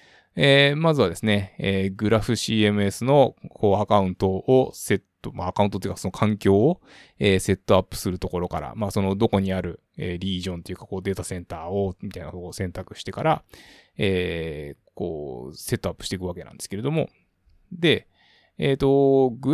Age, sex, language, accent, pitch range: 20-39, male, Japanese, native, 95-120 Hz